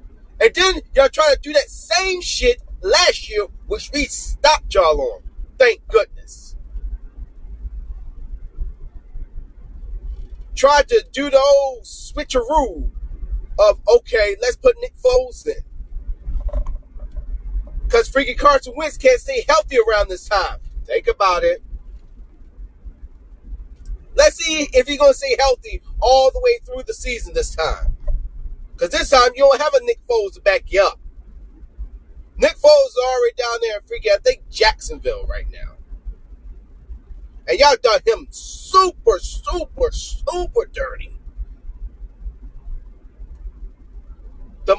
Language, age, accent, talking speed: English, 30-49, American, 125 wpm